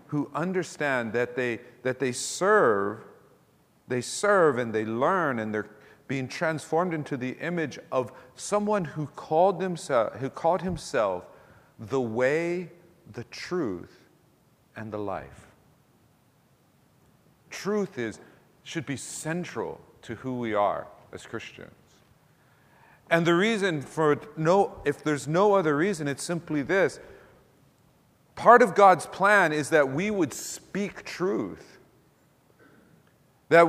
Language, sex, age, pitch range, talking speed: English, male, 50-69, 130-175 Hz, 125 wpm